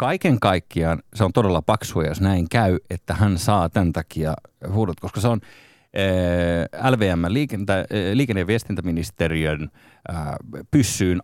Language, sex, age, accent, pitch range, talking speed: Finnish, male, 30-49, native, 90-125 Hz, 130 wpm